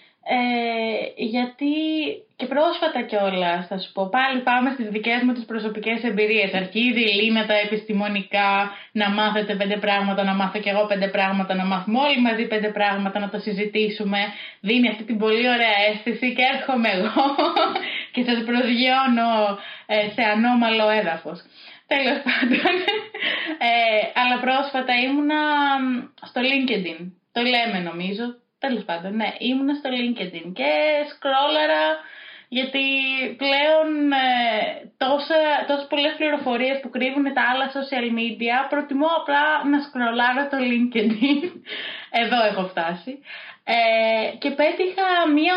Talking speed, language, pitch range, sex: 120 wpm, English, 210-280 Hz, female